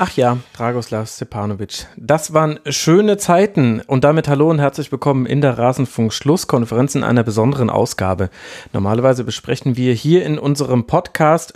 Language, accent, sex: German, German, male